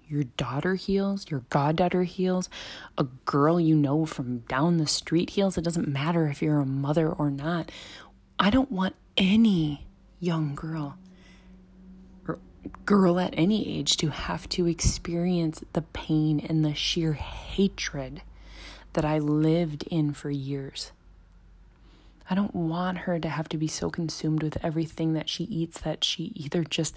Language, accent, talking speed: English, American, 155 wpm